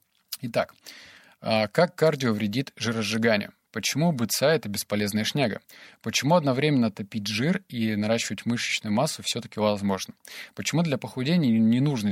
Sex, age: male, 20-39